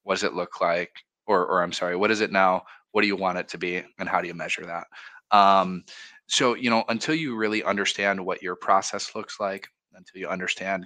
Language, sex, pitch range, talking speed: English, male, 90-105 Hz, 230 wpm